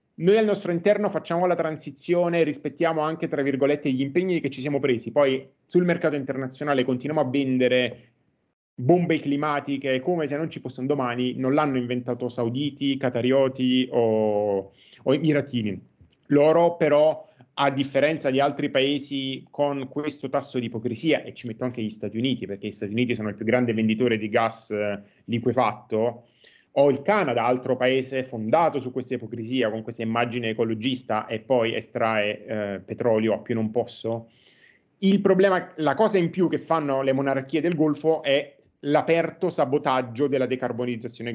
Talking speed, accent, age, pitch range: 160 wpm, native, 30-49, 120-150 Hz